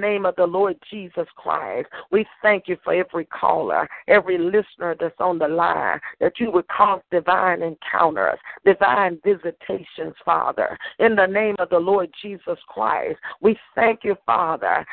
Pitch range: 175-210 Hz